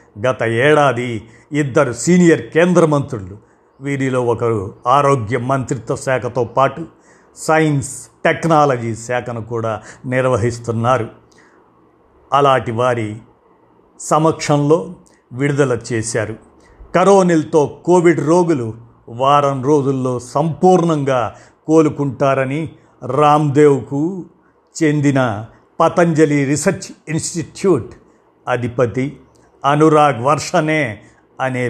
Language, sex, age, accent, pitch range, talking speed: Telugu, male, 50-69, native, 120-150 Hz, 75 wpm